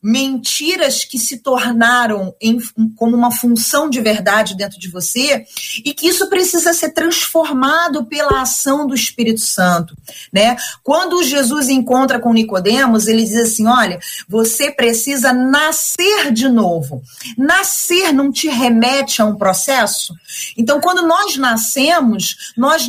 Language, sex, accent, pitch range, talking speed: Portuguese, female, Brazilian, 230-295 Hz, 135 wpm